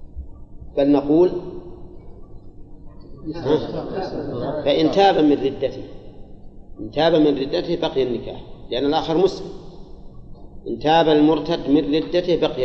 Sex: male